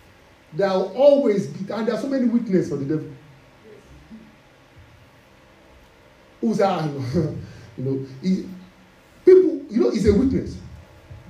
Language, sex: English, male